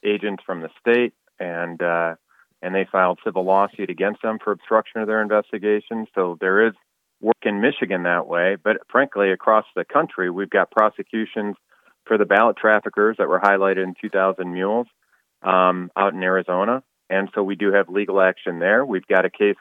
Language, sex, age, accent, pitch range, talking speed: English, male, 30-49, American, 95-110 Hz, 185 wpm